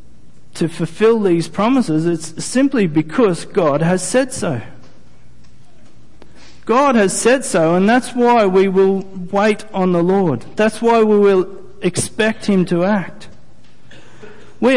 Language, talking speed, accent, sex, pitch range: English, 135 wpm, Australian, male, 145-195 Hz